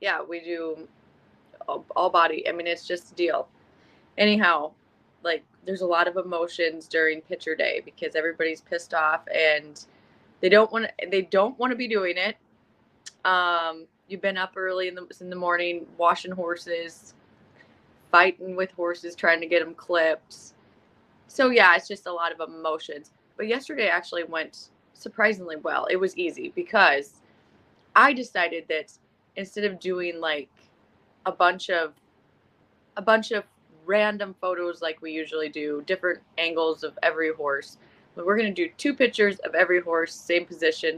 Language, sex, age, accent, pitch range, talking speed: English, female, 20-39, American, 165-195 Hz, 160 wpm